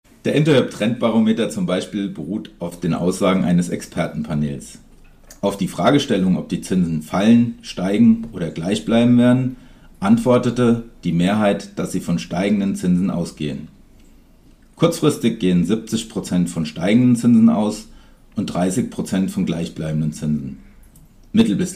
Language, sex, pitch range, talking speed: German, male, 85-120 Hz, 125 wpm